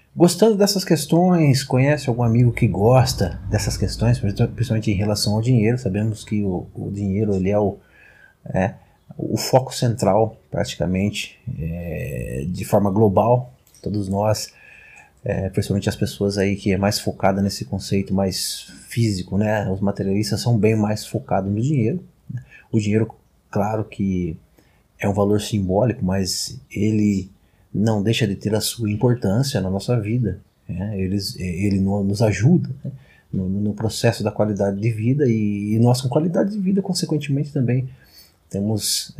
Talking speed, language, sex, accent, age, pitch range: 150 wpm, Portuguese, male, Brazilian, 20-39, 100-125 Hz